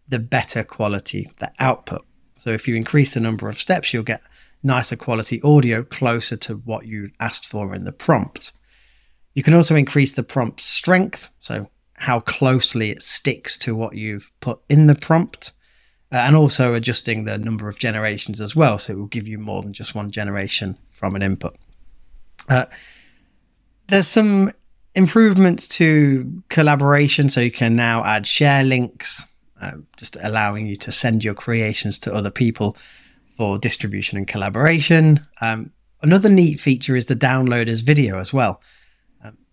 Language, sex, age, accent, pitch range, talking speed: English, male, 30-49, British, 105-140 Hz, 165 wpm